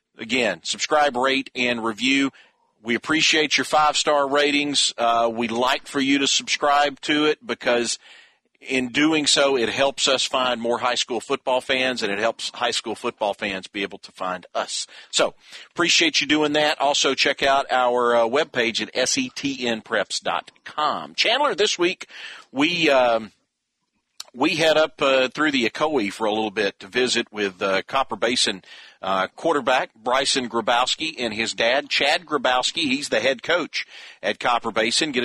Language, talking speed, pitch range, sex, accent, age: English, 165 wpm, 120-150 Hz, male, American, 50-69